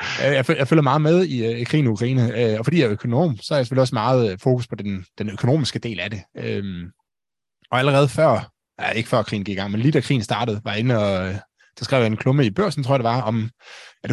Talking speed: 240 wpm